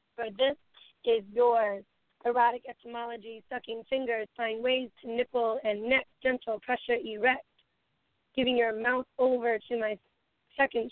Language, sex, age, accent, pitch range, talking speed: English, female, 30-49, American, 230-260 Hz, 130 wpm